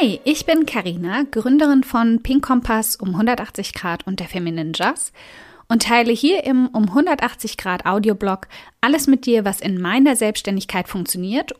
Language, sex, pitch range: German, female, 180-235 Hz